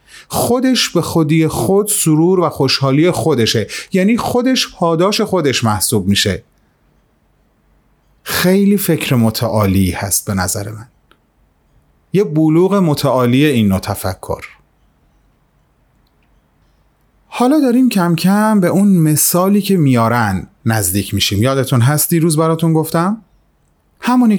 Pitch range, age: 120-175 Hz, 30-49